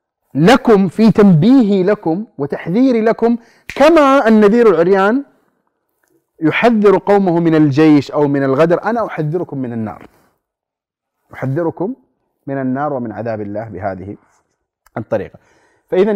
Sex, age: male, 30-49